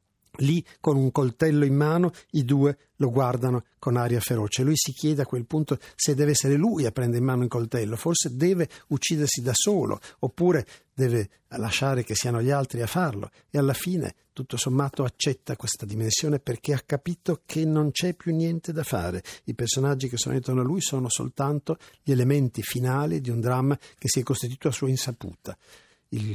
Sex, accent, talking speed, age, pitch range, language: male, native, 190 wpm, 50-69, 110-145 Hz, Italian